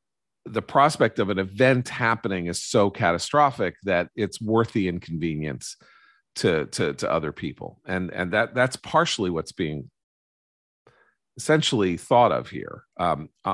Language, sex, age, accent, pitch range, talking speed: English, male, 40-59, American, 85-110 Hz, 135 wpm